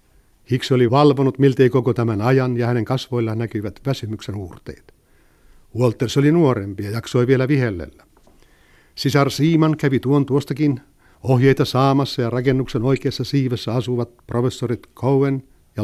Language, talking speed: Finnish, 135 wpm